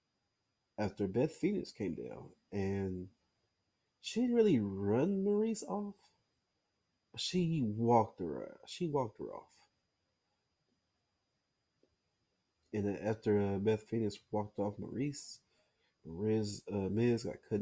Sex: male